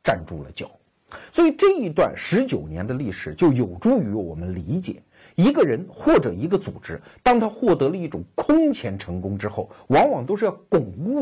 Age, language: 50-69, Chinese